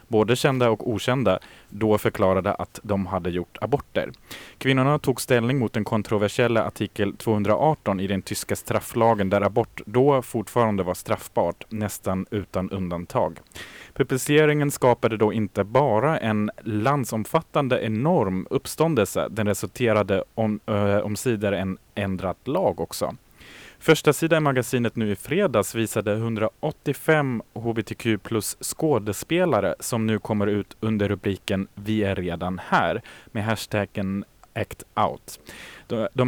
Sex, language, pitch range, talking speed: male, Swedish, 100-125 Hz, 125 wpm